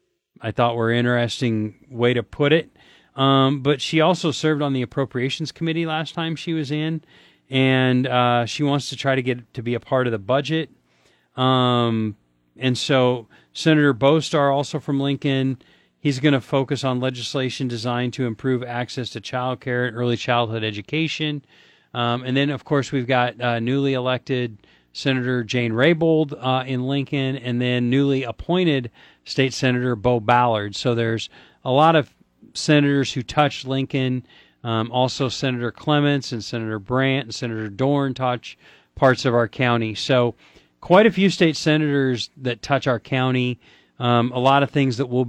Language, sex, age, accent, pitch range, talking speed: English, male, 40-59, American, 120-140 Hz, 170 wpm